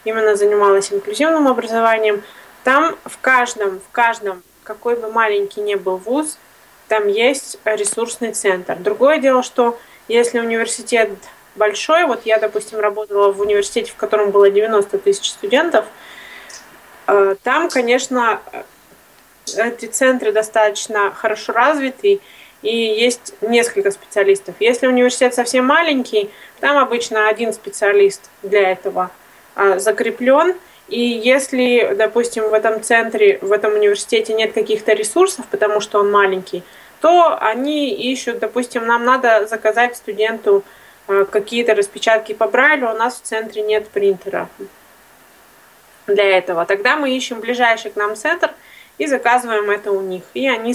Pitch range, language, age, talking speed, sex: 205-250 Hz, Russian, 20-39, 130 wpm, female